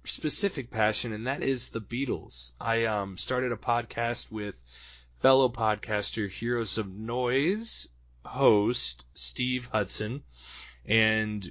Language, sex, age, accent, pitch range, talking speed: English, male, 20-39, American, 95-125 Hz, 115 wpm